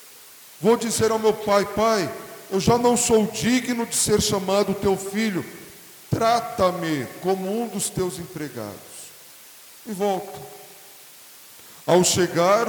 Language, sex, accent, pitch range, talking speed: Portuguese, male, Brazilian, 170-215 Hz, 125 wpm